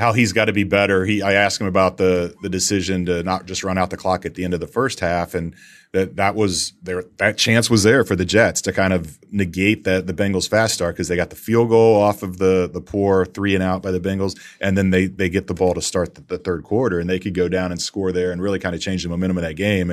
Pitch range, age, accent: 90-100 Hz, 30-49, American